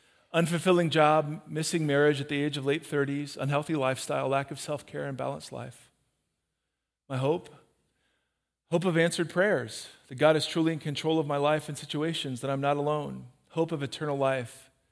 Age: 40-59